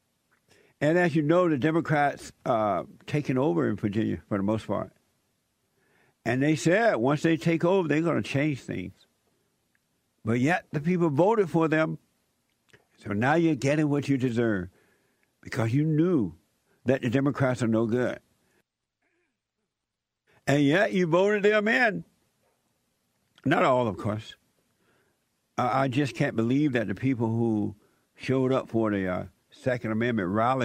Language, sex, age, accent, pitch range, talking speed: English, male, 60-79, American, 110-155 Hz, 150 wpm